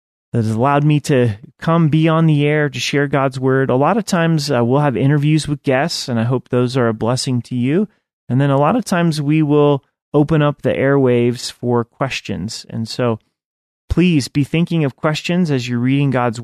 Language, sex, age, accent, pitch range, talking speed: English, male, 30-49, American, 120-150 Hz, 210 wpm